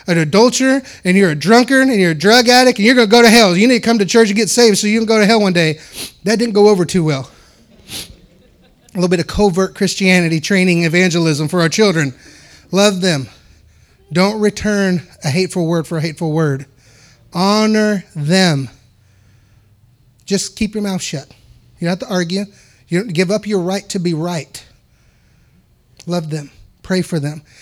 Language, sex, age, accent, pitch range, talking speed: English, male, 30-49, American, 155-200 Hz, 190 wpm